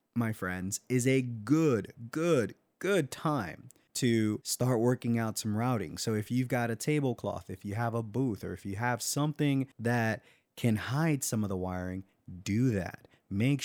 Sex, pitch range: male, 105-130 Hz